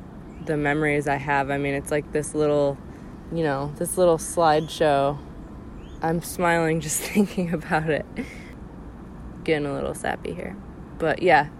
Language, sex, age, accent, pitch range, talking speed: English, female, 20-39, American, 140-160 Hz, 145 wpm